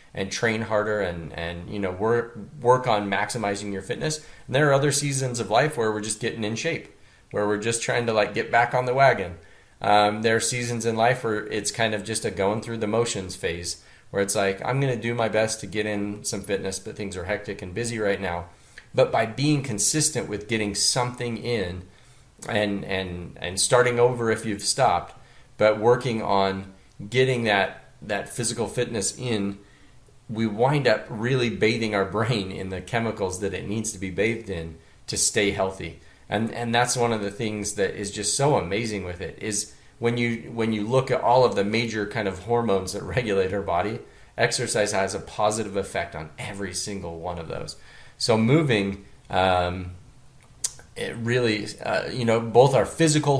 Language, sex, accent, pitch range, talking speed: English, male, American, 100-120 Hz, 195 wpm